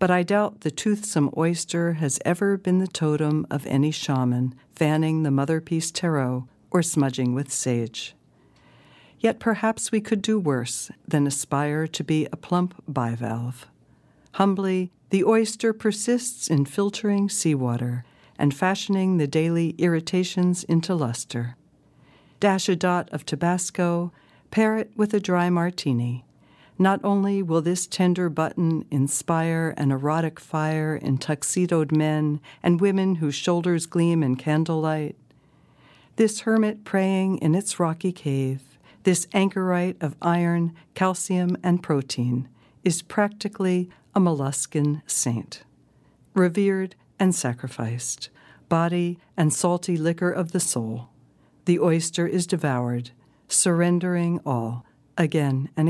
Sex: female